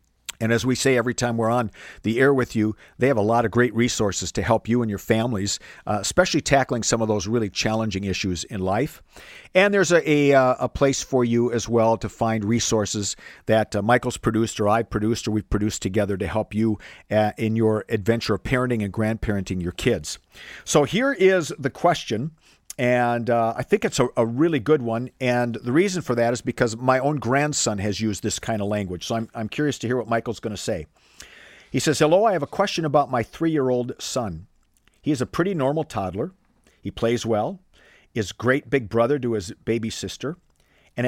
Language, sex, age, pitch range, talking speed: English, male, 50-69, 110-135 Hz, 210 wpm